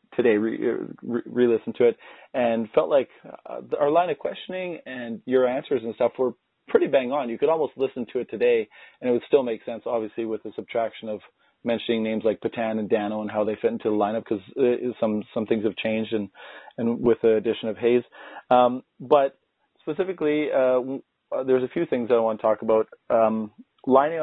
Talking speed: 210 wpm